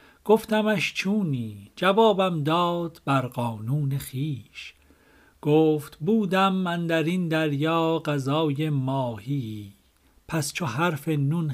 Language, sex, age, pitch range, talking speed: Persian, male, 50-69, 125-170 Hz, 100 wpm